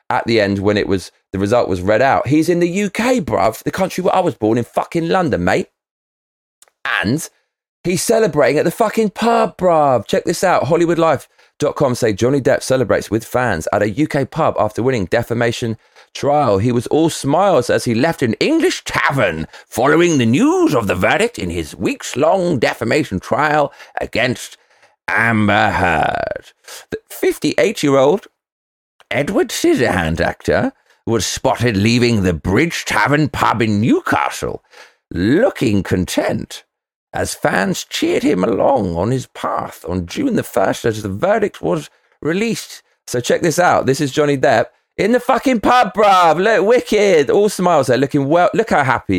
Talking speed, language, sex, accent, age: 165 wpm, English, male, British, 40-59